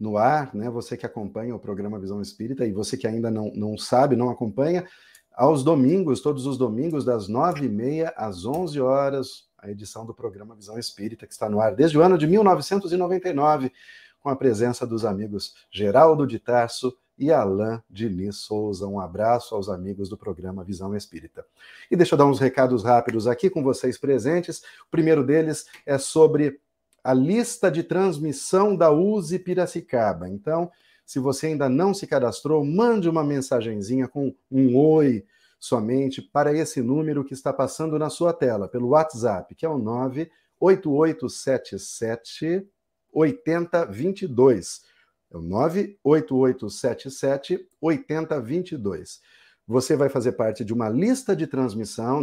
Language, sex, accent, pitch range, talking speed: Portuguese, male, Brazilian, 115-160 Hz, 150 wpm